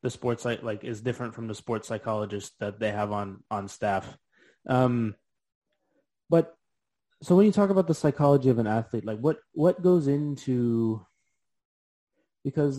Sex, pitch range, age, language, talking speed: male, 105-130 Hz, 20-39, English, 160 wpm